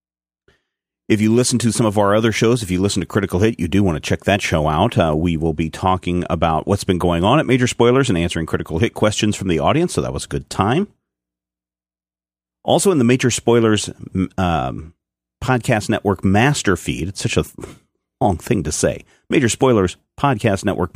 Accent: American